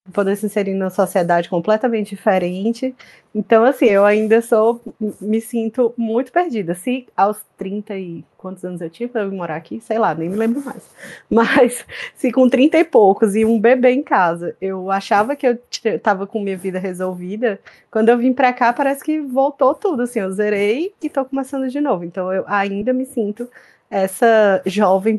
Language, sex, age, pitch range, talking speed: Portuguese, female, 20-39, 195-235 Hz, 185 wpm